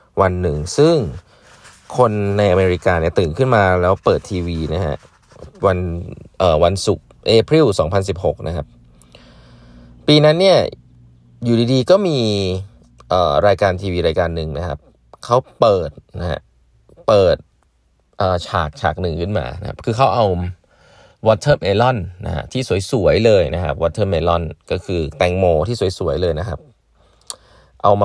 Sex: male